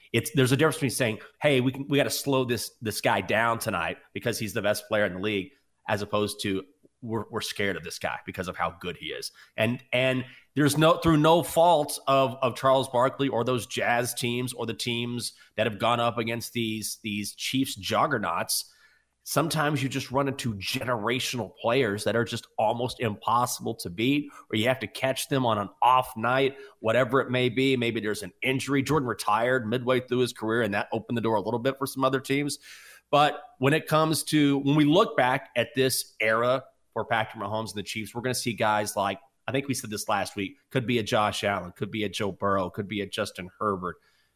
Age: 30-49